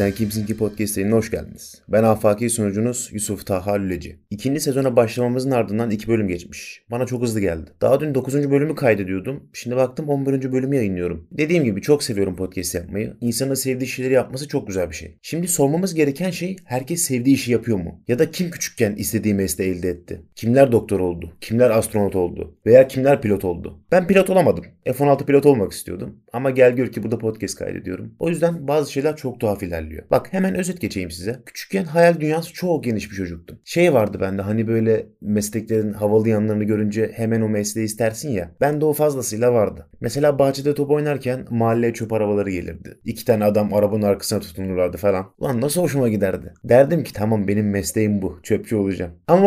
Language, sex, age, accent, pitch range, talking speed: Turkish, male, 30-49, native, 105-140 Hz, 190 wpm